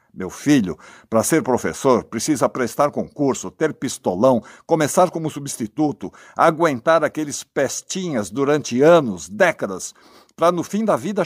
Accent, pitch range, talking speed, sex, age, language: Brazilian, 115-180 Hz, 130 wpm, male, 60-79, Portuguese